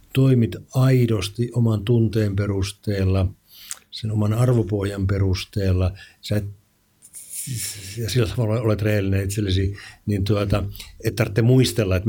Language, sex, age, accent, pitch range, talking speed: Finnish, male, 60-79, native, 100-115 Hz, 115 wpm